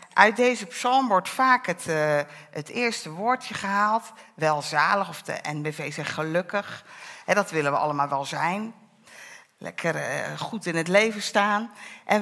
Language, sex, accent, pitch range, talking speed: Dutch, female, Dutch, 175-240 Hz, 145 wpm